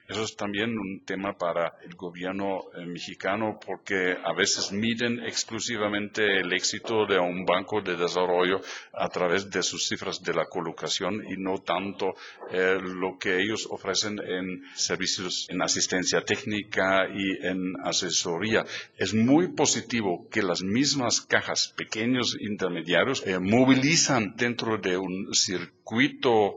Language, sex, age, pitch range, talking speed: Spanish, male, 50-69, 95-115 Hz, 140 wpm